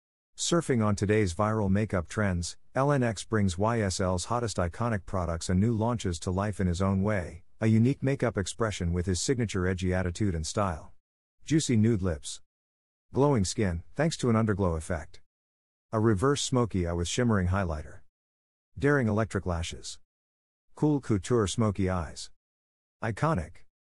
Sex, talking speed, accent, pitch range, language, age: male, 145 wpm, American, 85-110 Hz, English, 50-69